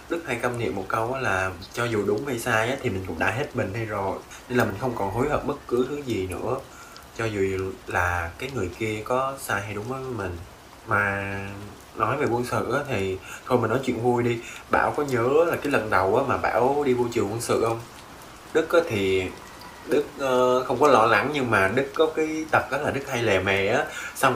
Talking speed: 230 wpm